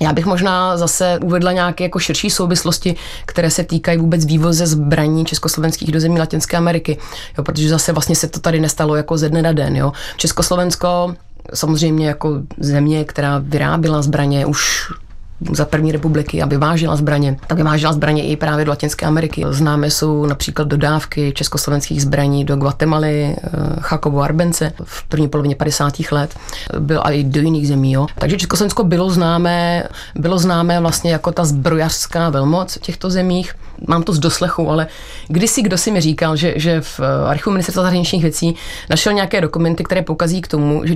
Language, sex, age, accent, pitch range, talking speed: Czech, female, 30-49, native, 150-180 Hz, 170 wpm